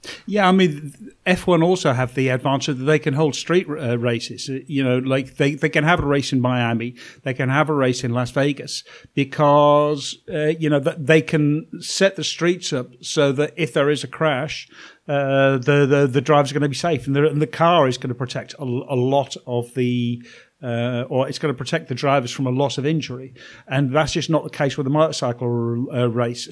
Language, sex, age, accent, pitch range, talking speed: English, male, 50-69, British, 130-155 Hz, 225 wpm